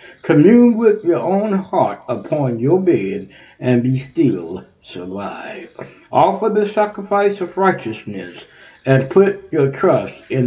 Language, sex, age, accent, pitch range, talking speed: English, male, 60-79, American, 120-175 Hz, 125 wpm